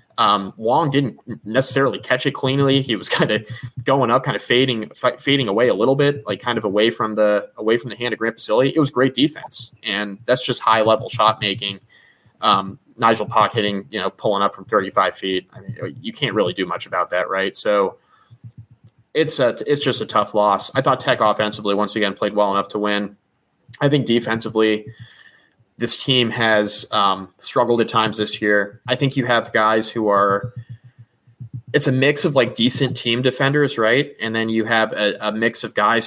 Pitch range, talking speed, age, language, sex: 105-125 Hz, 205 wpm, 20-39, English, male